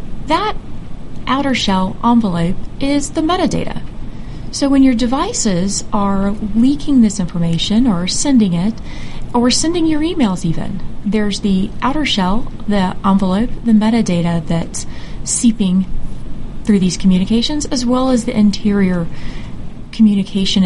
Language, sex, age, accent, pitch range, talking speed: English, female, 30-49, American, 195-250 Hz, 120 wpm